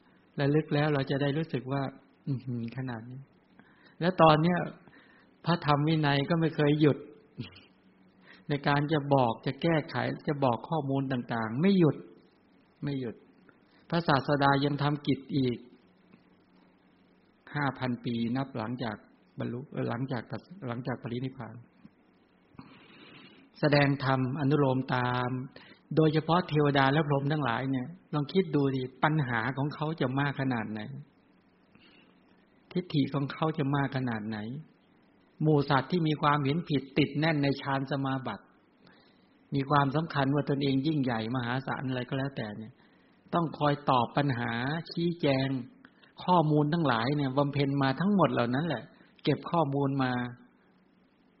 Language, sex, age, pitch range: English, male, 60-79, 125-150 Hz